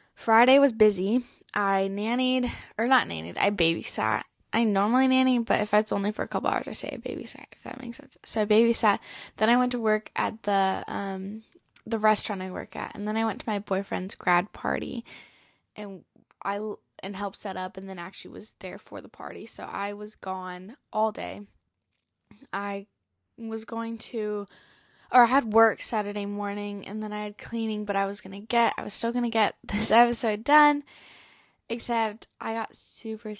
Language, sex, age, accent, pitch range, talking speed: English, female, 10-29, American, 200-235 Hz, 195 wpm